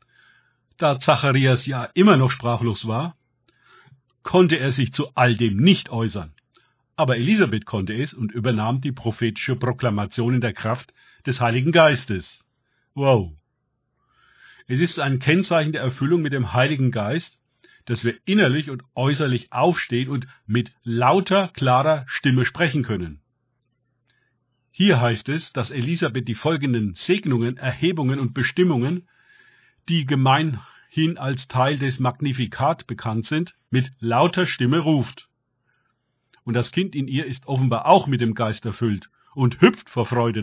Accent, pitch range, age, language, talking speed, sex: German, 120-150 Hz, 50-69, German, 140 wpm, male